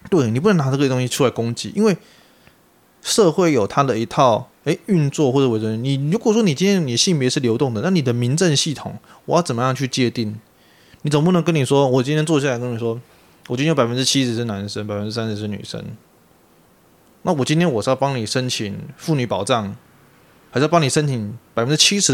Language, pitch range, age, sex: Chinese, 115-155 Hz, 20-39, male